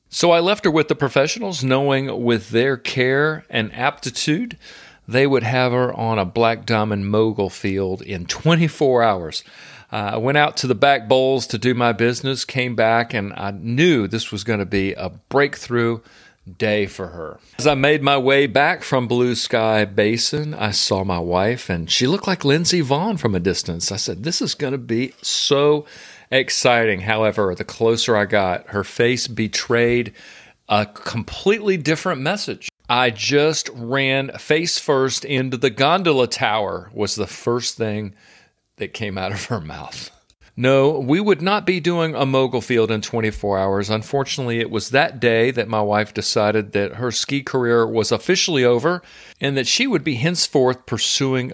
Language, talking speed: English, 175 wpm